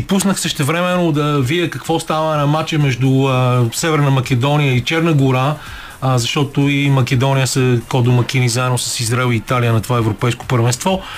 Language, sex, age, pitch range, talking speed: Bulgarian, male, 40-59, 130-160 Hz, 165 wpm